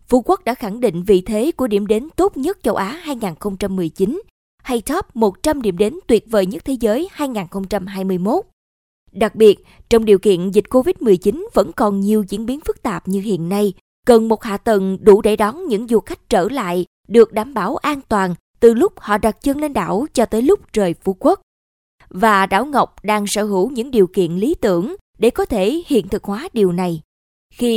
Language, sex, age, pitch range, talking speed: Vietnamese, female, 20-39, 200-260 Hz, 200 wpm